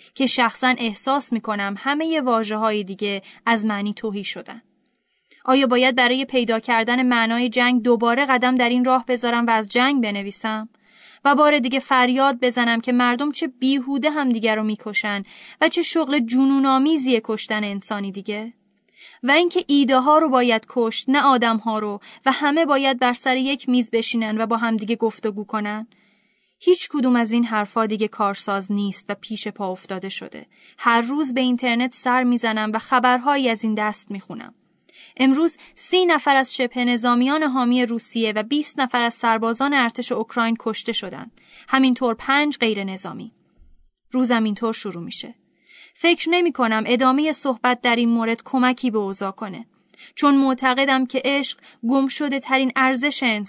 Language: Persian